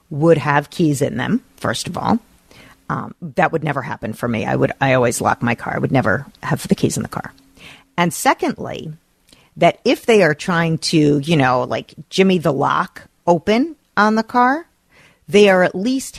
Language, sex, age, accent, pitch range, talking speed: English, female, 40-59, American, 160-220 Hz, 195 wpm